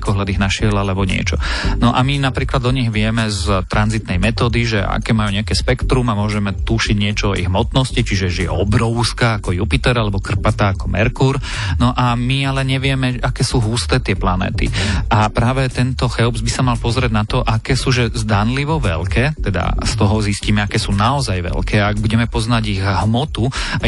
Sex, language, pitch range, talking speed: male, Slovak, 100-125 Hz, 195 wpm